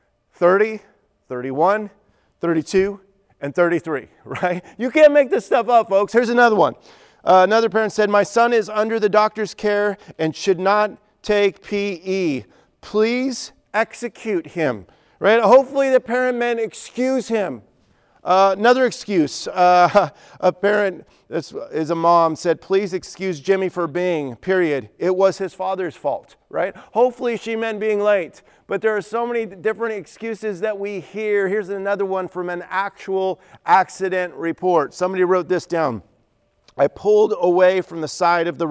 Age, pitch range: 40-59, 160-210 Hz